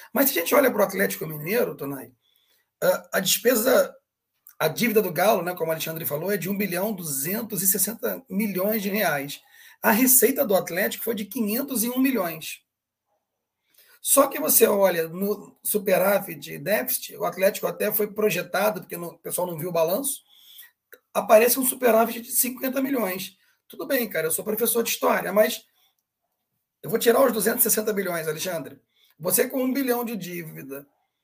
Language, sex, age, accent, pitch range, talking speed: Portuguese, male, 40-59, Brazilian, 180-230 Hz, 165 wpm